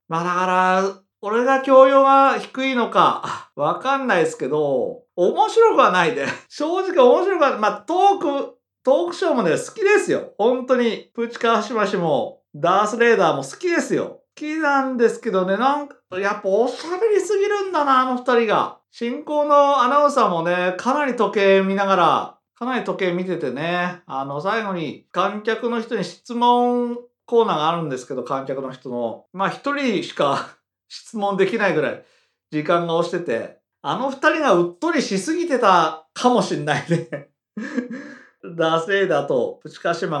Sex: male